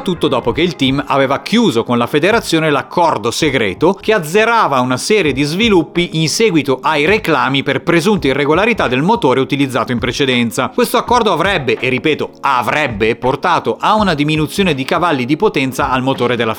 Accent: native